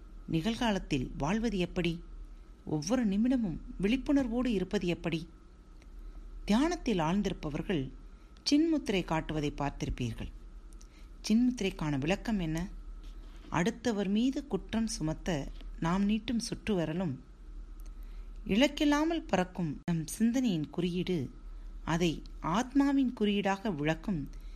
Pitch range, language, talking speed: 130-215 Hz, Tamil, 80 wpm